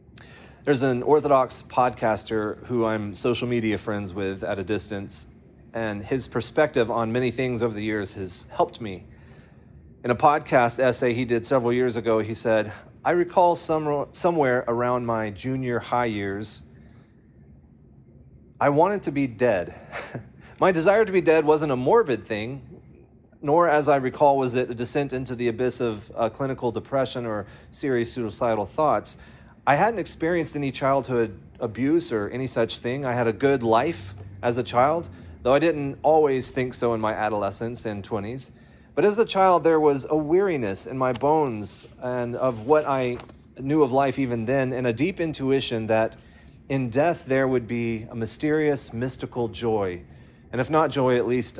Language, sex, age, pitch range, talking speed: English, male, 30-49, 115-135 Hz, 170 wpm